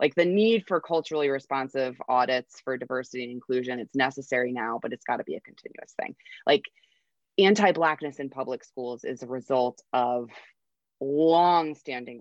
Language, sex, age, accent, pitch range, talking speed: English, female, 20-39, American, 130-160 Hz, 150 wpm